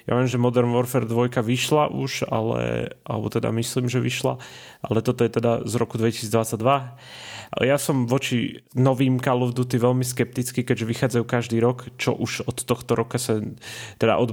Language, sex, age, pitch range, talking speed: Slovak, male, 30-49, 115-130 Hz, 180 wpm